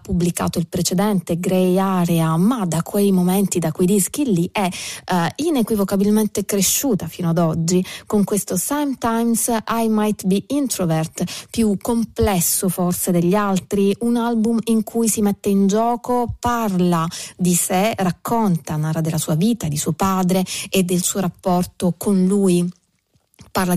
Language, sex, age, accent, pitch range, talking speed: Italian, female, 30-49, native, 170-205 Hz, 145 wpm